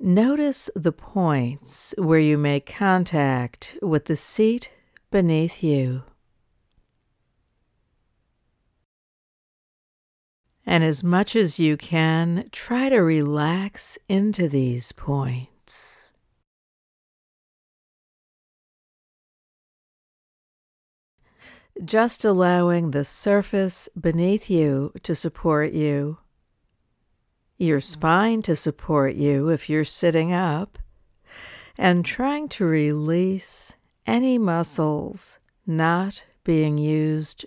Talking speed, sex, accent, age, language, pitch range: 80 wpm, female, American, 60-79, English, 150-190 Hz